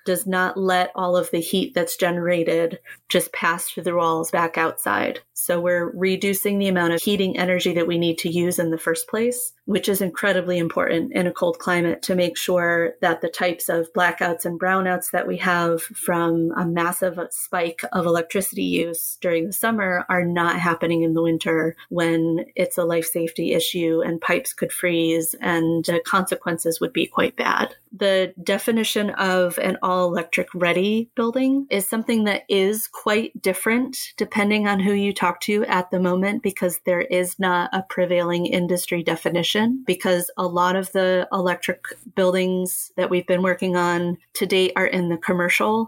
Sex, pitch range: female, 175-195 Hz